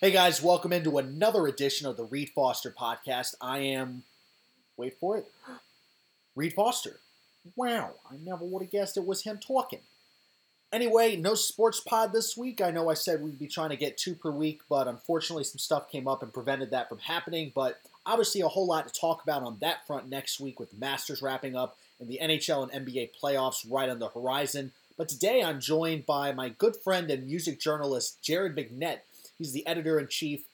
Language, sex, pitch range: English, male, 135-170 Hz